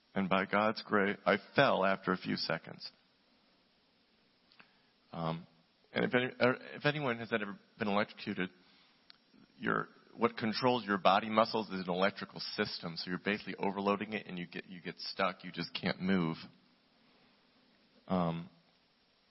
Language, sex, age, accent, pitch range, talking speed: English, male, 40-59, American, 95-115 Hz, 145 wpm